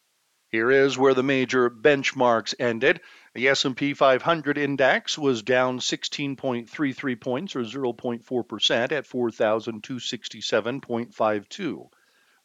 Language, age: English, 50-69